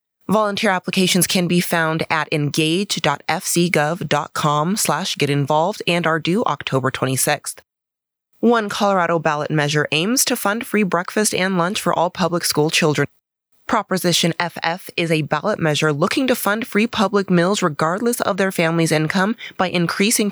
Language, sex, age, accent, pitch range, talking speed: English, female, 20-39, American, 150-185 Hz, 145 wpm